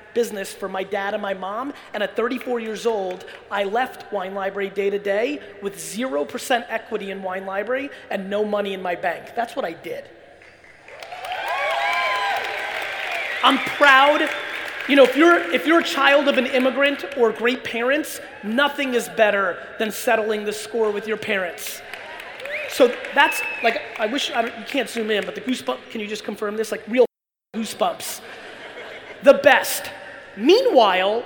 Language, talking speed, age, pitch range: English, 165 wpm, 30-49, 200-260 Hz